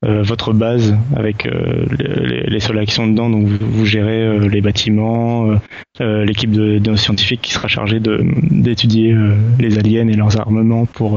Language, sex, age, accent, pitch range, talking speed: French, male, 20-39, French, 105-120 Hz, 195 wpm